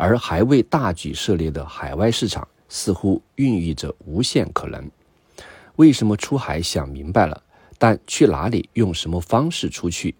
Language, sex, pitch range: Chinese, male, 80-115 Hz